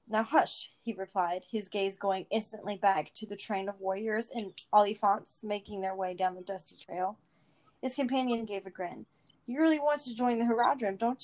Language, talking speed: English, 190 wpm